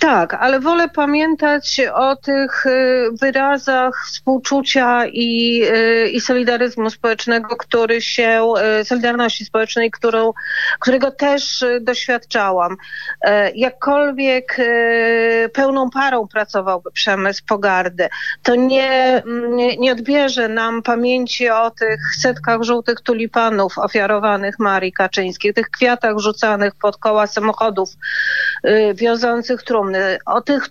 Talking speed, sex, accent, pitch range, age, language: 100 wpm, female, native, 215-260 Hz, 30-49, Polish